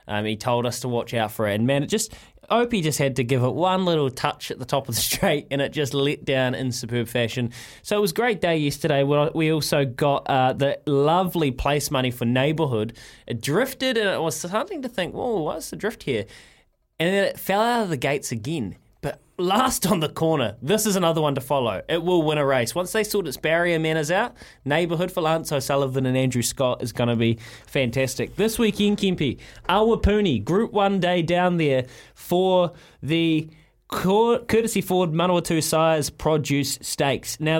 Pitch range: 130-170 Hz